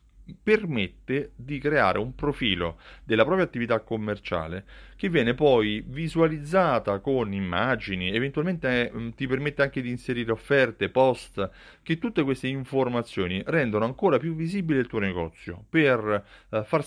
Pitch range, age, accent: 100-130 Hz, 30-49, native